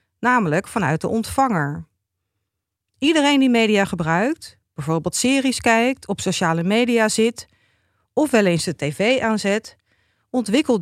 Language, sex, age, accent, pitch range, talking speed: Dutch, female, 40-59, Dutch, 170-235 Hz, 120 wpm